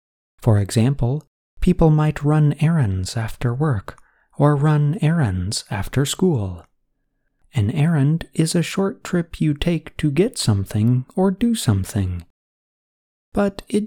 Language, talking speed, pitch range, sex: English, 125 wpm, 105-170 Hz, male